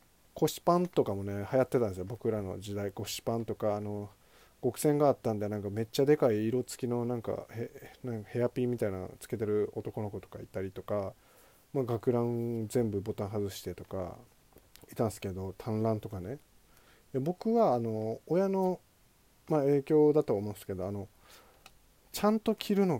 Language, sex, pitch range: Japanese, male, 105-135 Hz